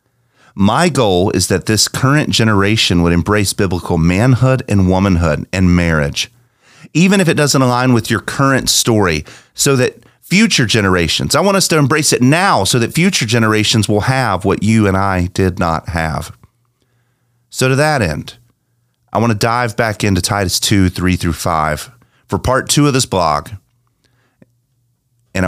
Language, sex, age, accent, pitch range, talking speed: English, male, 30-49, American, 95-125 Hz, 165 wpm